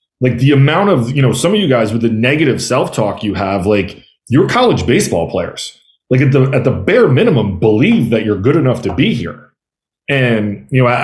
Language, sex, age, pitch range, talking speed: English, male, 30-49, 110-135 Hz, 225 wpm